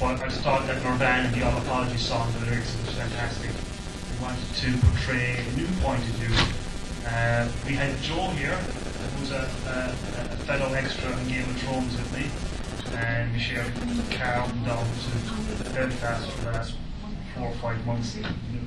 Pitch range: 115-130 Hz